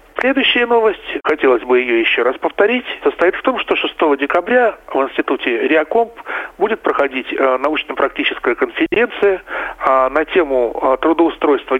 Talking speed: 120 wpm